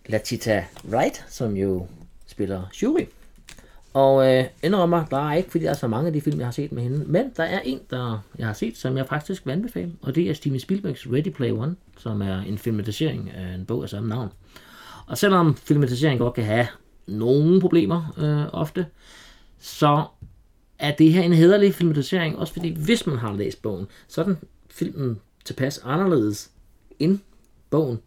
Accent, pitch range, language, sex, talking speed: native, 110-155 Hz, Danish, male, 190 wpm